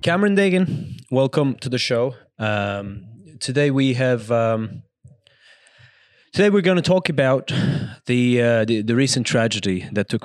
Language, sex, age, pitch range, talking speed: English, male, 20-39, 100-120 Hz, 145 wpm